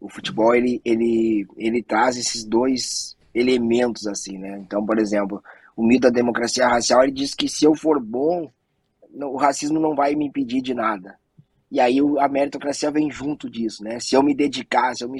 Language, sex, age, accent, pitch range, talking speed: Portuguese, male, 20-39, Brazilian, 120-155 Hz, 195 wpm